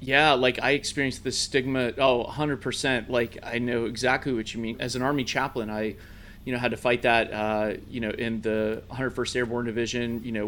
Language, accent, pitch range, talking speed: English, American, 115-135 Hz, 205 wpm